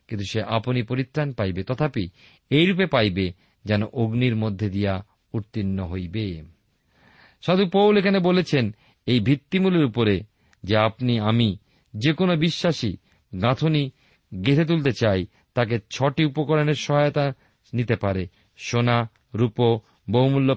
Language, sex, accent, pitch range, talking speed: Bengali, male, native, 105-150 Hz, 90 wpm